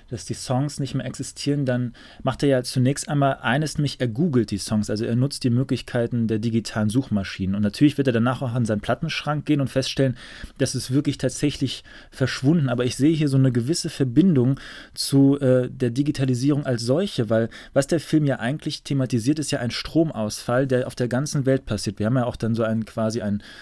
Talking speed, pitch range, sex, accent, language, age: 210 wpm, 115-140 Hz, male, German, German, 30-49